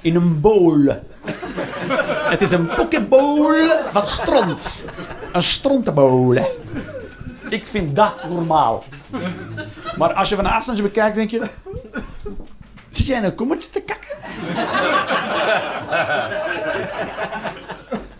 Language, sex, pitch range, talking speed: Dutch, male, 170-275 Hz, 100 wpm